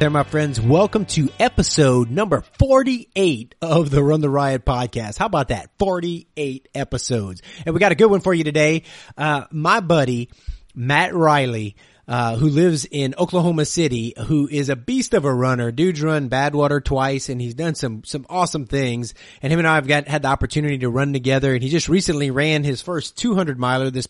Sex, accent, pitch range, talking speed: male, American, 125-160 Hz, 195 wpm